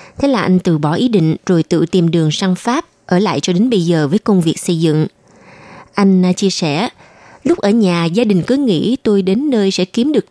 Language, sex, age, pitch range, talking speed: Vietnamese, female, 20-39, 180-225 Hz, 235 wpm